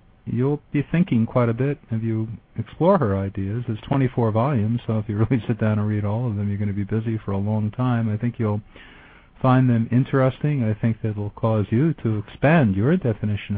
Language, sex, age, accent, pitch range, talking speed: English, male, 50-69, American, 105-125 Hz, 220 wpm